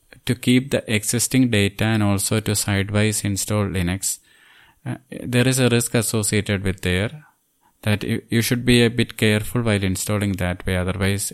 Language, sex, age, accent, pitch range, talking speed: English, male, 20-39, Indian, 95-115 Hz, 170 wpm